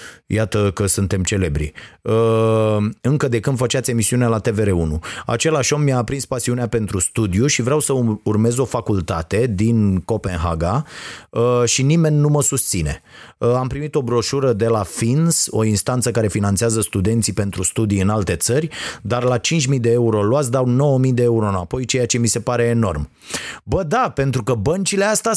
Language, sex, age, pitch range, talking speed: Romanian, male, 30-49, 115-165 Hz, 170 wpm